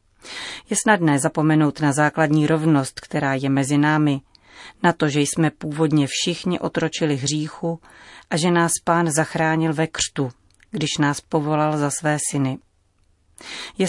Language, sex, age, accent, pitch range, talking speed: Czech, female, 30-49, native, 145-165 Hz, 140 wpm